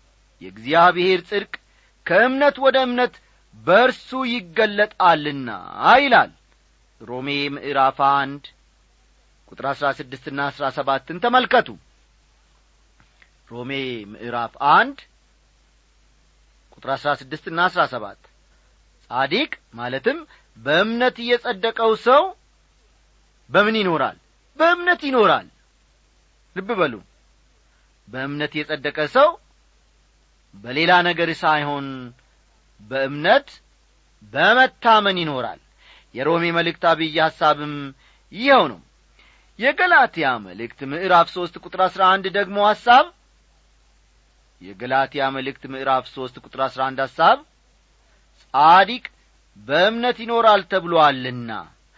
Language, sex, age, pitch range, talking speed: Amharic, male, 40-59, 135-205 Hz, 75 wpm